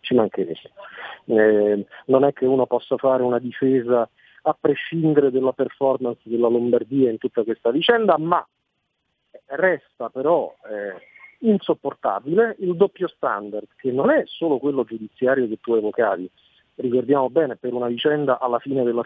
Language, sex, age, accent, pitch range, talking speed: Italian, male, 40-59, native, 120-160 Hz, 145 wpm